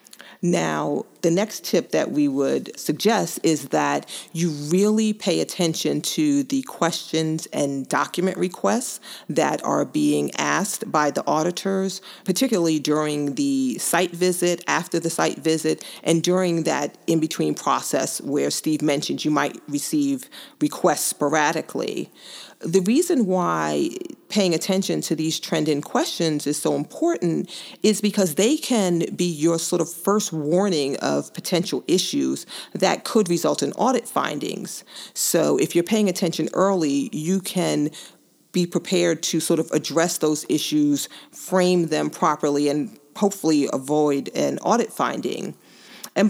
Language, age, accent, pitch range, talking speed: English, 40-59, American, 155-210 Hz, 135 wpm